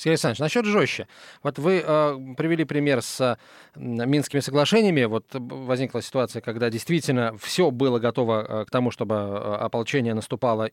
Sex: male